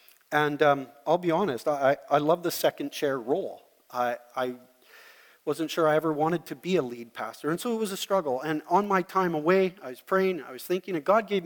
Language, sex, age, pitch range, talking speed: English, male, 40-59, 135-180 Hz, 230 wpm